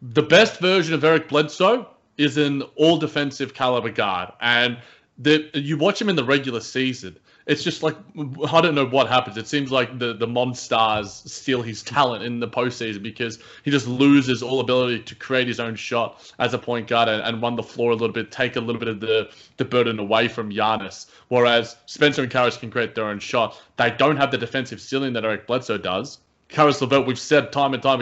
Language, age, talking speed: English, 20-39, 210 wpm